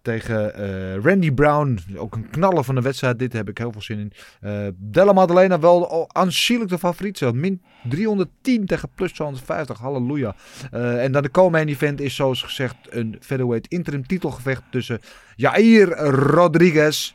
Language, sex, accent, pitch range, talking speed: Dutch, male, Dutch, 110-160 Hz, 170 wpm